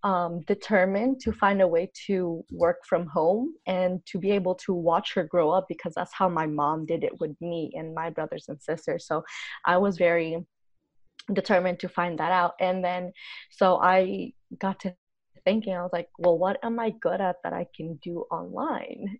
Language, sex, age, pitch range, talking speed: English, female, 20-39, 170-200 Hz, 195 wpm